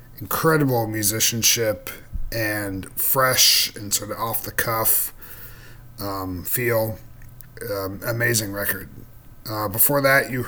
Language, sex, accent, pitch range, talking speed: English, male, American, 100-120 Hz, 90 wpm